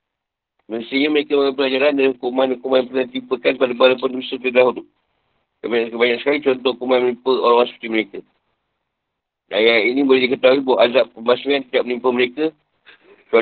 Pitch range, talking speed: 120-140 Hz, 150 wpm